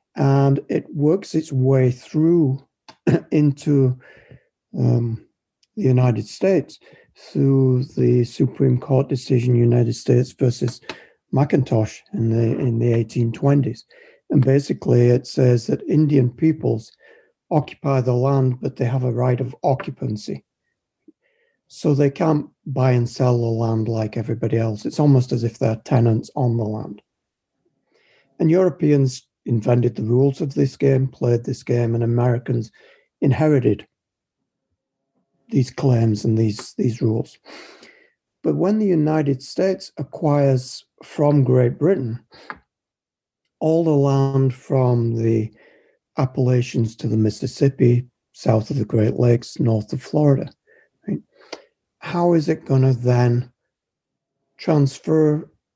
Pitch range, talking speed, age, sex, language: 120-140 Hz, 125 wpm, 60-79, male, English